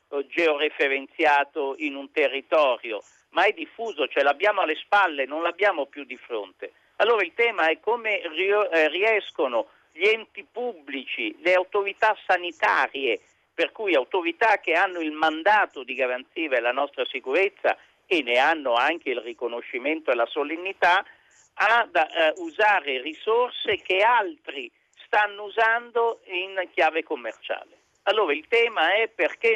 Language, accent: Italian, native